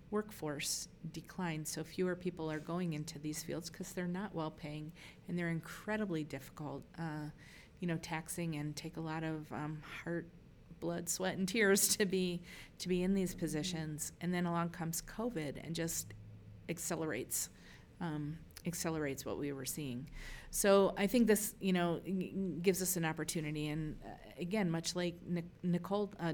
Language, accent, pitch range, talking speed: English, American, 150-180 Hz, 165 wpm